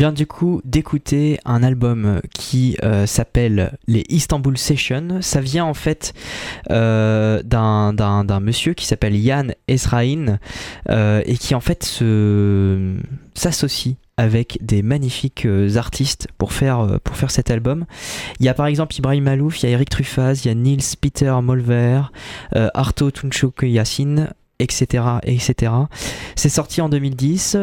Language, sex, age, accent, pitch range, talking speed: French, male, 20-39, French, 105-135 Hz, 160 wpm